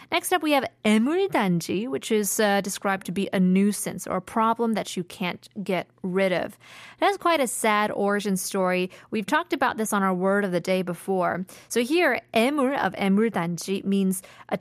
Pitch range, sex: 185-230 Hz, female